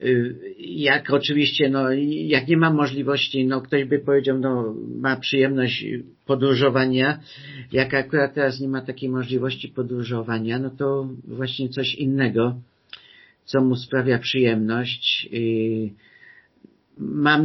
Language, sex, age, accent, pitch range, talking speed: Polish, male, 50-69, native, 115-135 Hz, 115 wpm